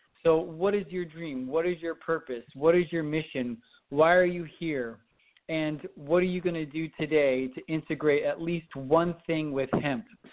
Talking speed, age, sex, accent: 190 wpm, 40-59, male, American